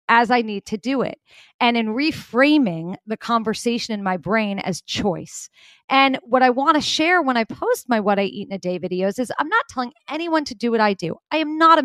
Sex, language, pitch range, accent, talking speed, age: female, English, 220-290 Hz, American, 240 wpm, 30-49